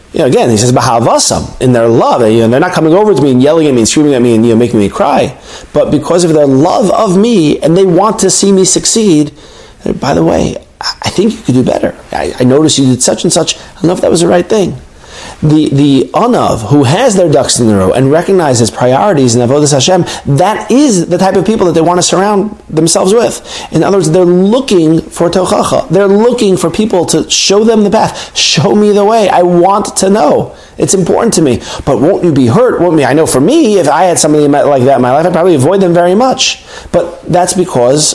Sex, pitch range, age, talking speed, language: male, 145-205 Hz, 40-59, 235 wpm, English